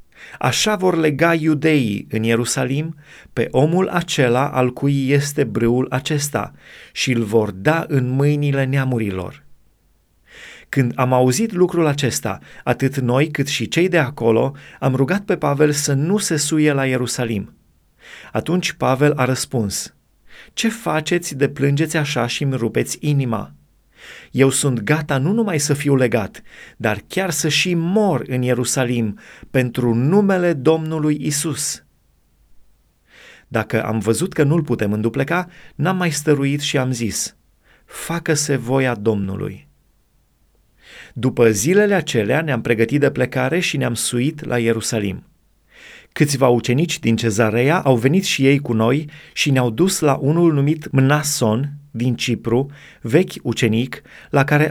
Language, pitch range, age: Romanian, 120-155 Hz, 30-49